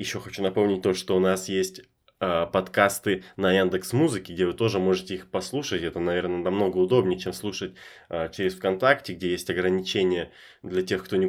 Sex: male